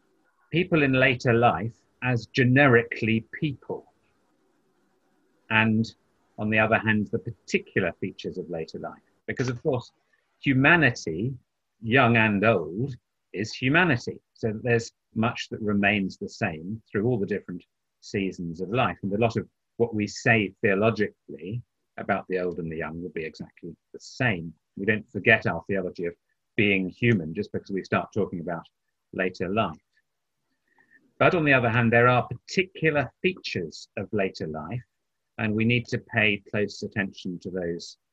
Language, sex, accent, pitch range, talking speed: English, male, British, 100-130 Hz, 155 wpm